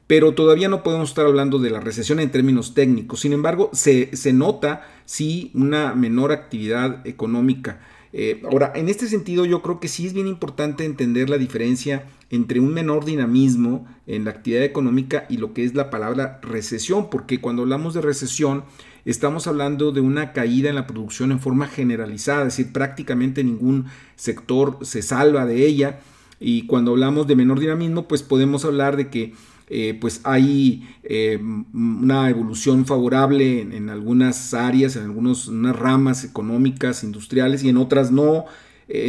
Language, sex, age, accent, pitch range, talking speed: Spanish, male, 40-59, Mexican, 125-150 Hz, 165 wpm